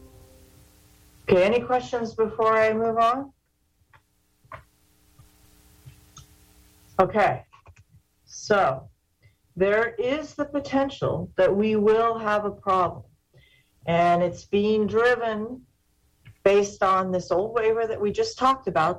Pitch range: 170-215 Hz